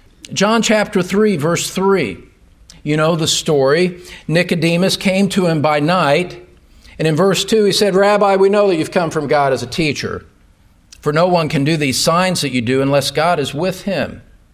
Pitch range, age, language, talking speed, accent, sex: 165-230 Hz, 50-69, English, 195 wpm, American, male